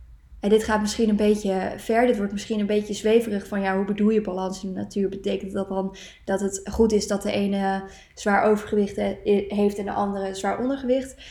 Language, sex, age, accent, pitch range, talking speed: Dutch, female, 20-39, Dutch, 195-230 Hz, 210 wpm